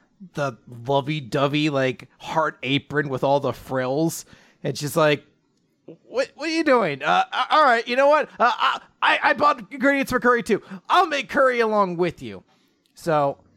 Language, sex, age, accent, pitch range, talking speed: English, male, 30-49, American, 130-195 Hz, 170 wpm